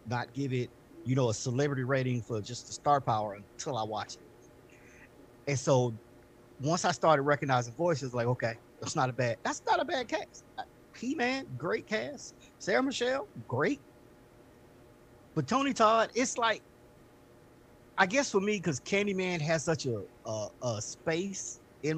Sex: male